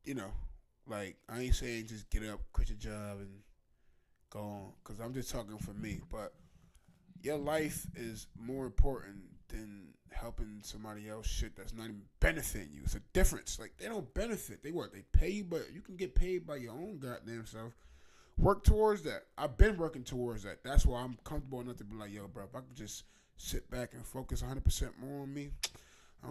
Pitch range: 105-155 Hz